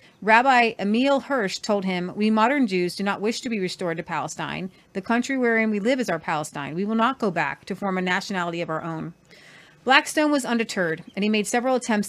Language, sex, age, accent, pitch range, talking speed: English, female, 30-49, American, 180-225 Hz, 220 wpm